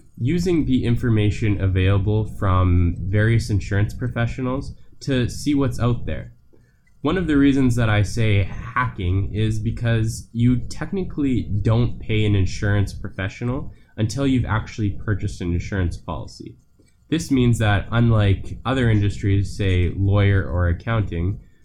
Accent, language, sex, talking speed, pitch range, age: American, English, male, 130 wpm, 95-120 Hz, 10-29